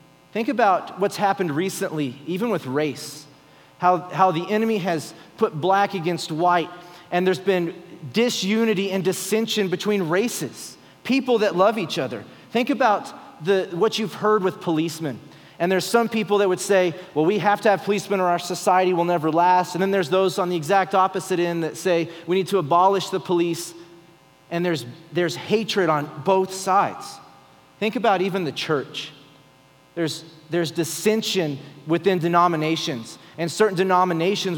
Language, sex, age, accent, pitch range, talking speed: English, male, 30-49, American, 155-195 Hz, 165 wpm